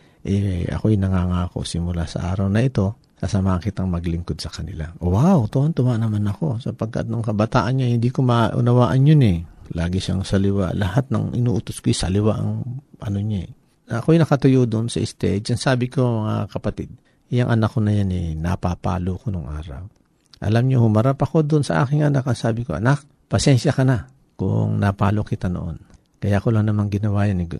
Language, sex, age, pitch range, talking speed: Filipino, male, 50-69, 90-115 Hz, 185 wpm